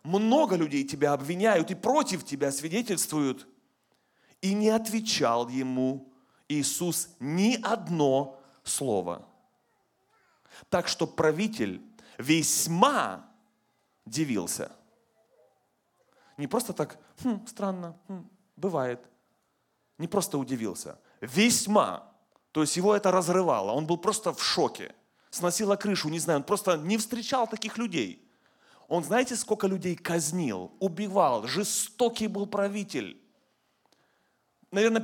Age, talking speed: 30-49, 105 wpm